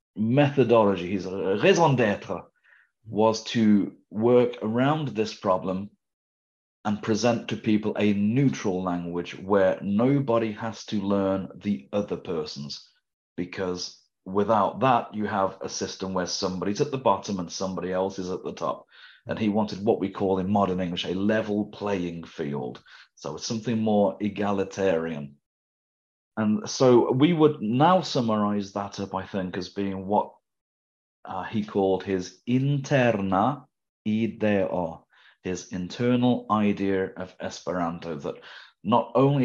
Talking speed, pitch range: 135 wpm, 95-110 Hz